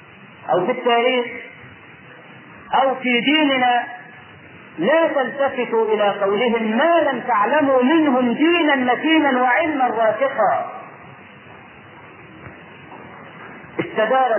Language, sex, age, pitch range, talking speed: Arabic, male, 40-59, 245-305 Hz, 80 wpm